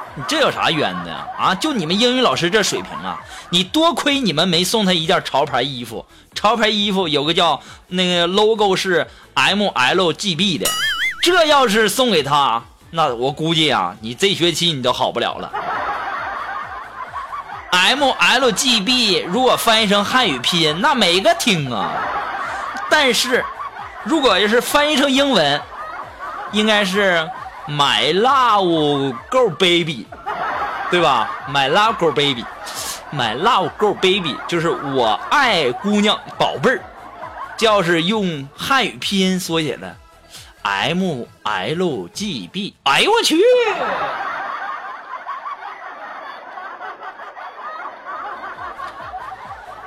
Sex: male